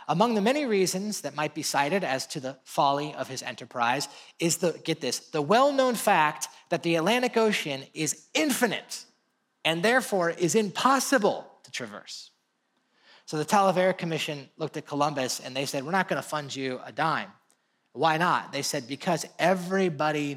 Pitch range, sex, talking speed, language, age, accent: 140-195 Hz, male, 170 wpm, English, 30-49, American